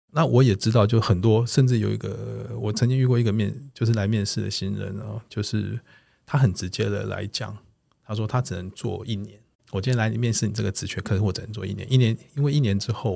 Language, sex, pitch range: Chinese, male, 95-120 Hz